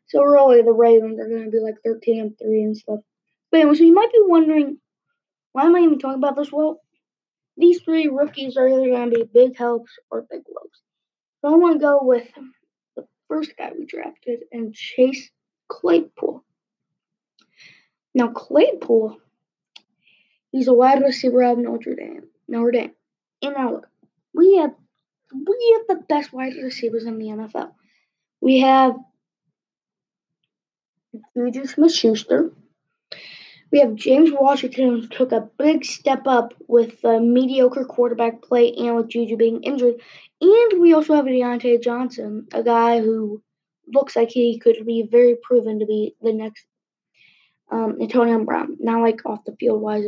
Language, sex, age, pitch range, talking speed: English, female, 20-39, 230-300 Hz, 165 wpm